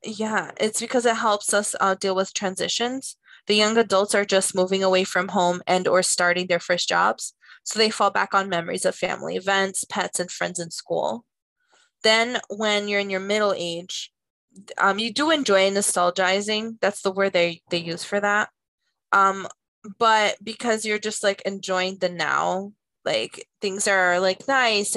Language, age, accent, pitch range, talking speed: English, 20-39, American, 190-220 Hz, 175 wpm